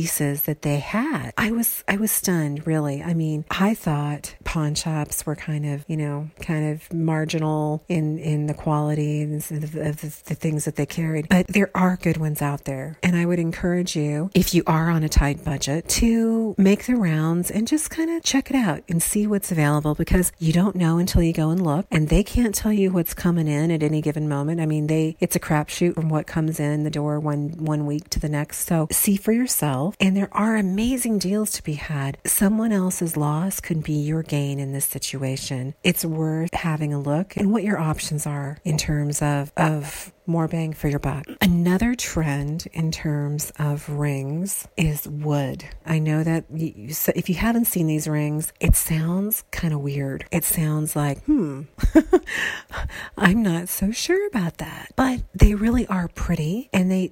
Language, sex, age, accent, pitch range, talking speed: English, female, 40-59, American, 150-180 Hz, 200 wpm